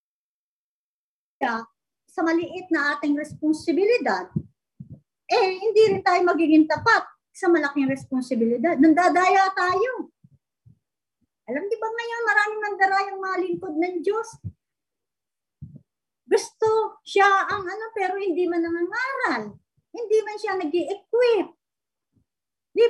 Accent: Filipino